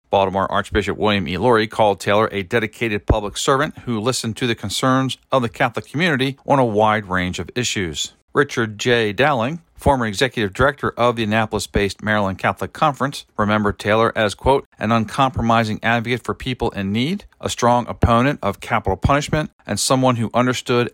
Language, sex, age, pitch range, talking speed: English, male, 50-69, 105-130 Hz, 170 wpm